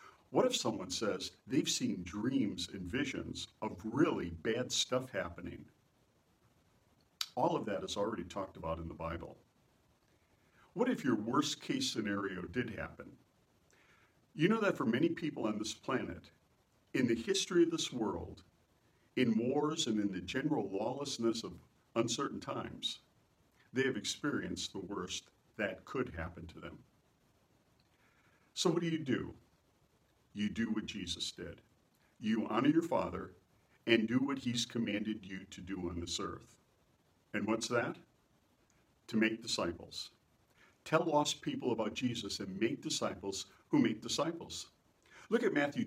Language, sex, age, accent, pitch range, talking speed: English, male, 60-79, American, 95-135 Hz, 145 wpm